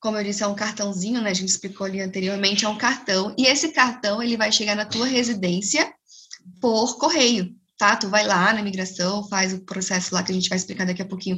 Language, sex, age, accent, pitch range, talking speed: Portuguese, female, 10-29, Brazilian, 200-250 Hz, 230 wpm